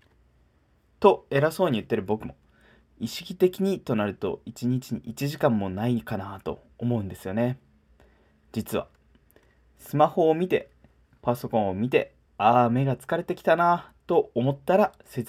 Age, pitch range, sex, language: 20-39, 100-155 Hz, male, Japanese